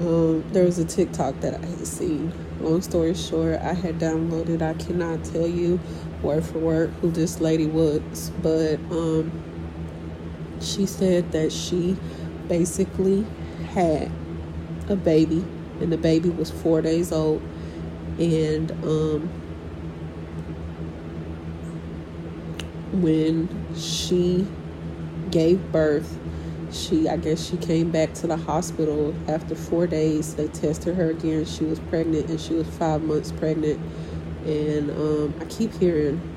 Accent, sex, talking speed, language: American, female, 130 wpm, English